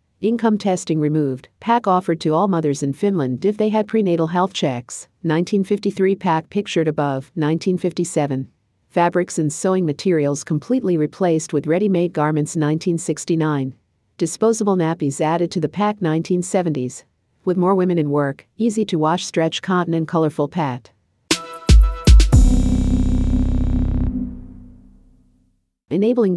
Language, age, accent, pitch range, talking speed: English, 50-69, American, 135-180 Hz, 120 wpm